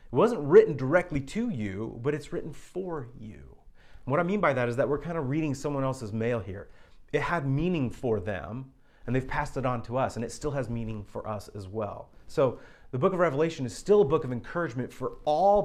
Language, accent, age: English, American, 30-49